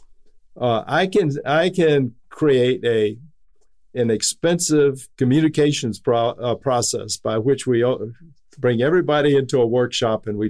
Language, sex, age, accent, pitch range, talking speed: English, male, 50-69, American, 115-145 Hz, 120 wpm